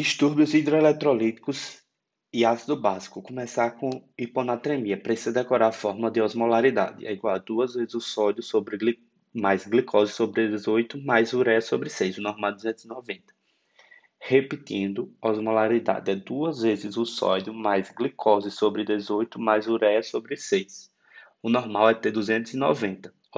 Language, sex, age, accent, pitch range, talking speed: Portuguese, male, 20-39, Brazilian, 110-135 Hz, 140 wpm